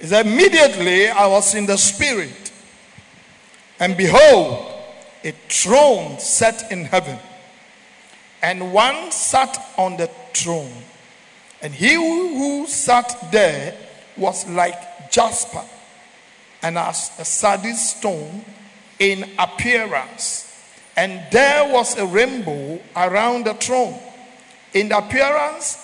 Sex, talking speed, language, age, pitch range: male, 100 wpm, English, 50-69, 185-250 Hz